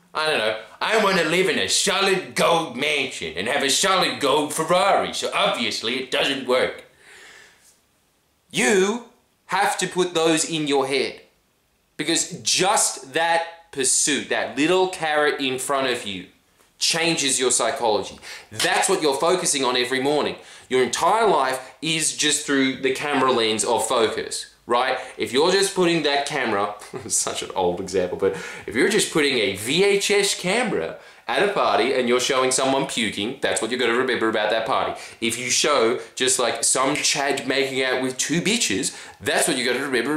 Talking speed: 175 wpm